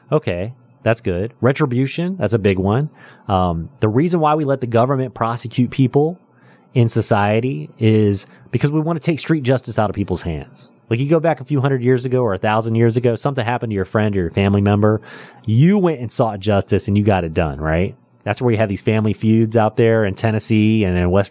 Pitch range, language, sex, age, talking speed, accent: 100-130 Hz, English, male, 30-49, 225 wpm, American